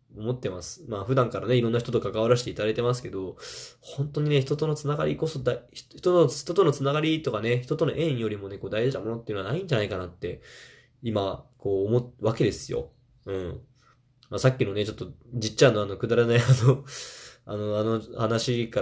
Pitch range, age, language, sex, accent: 105-130 Hz, 20-39, Japanese, male, native